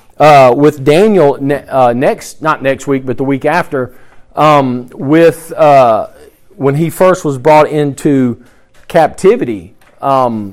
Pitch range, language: 140-175 Hz, English